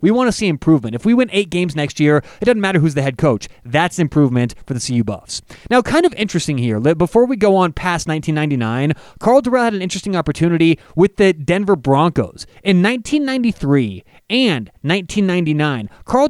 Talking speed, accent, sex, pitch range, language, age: 190 wpm, American, male, 145-195 Hz, English, 30-49